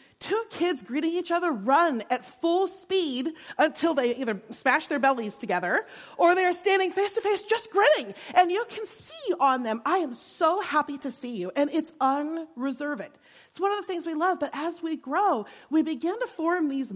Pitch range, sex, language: 245-350 Hz, female, English